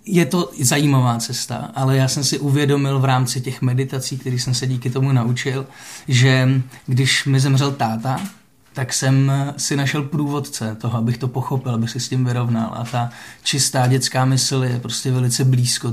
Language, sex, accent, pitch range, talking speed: Czech, male, native, 125-135 Hz, 175 wpm